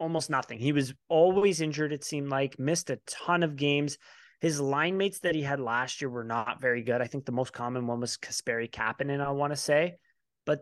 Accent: American